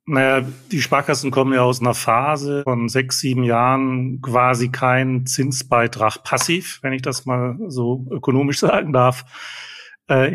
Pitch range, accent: 115-130 Hz, German